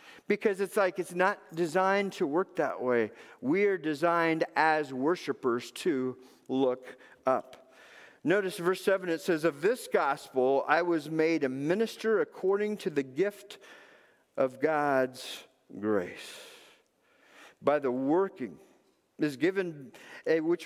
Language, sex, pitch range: English, male, 145-195 Hz